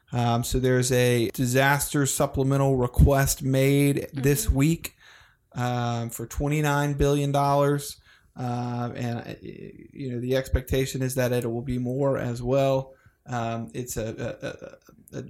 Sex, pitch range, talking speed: male, 120-145 Hz, 125 wpm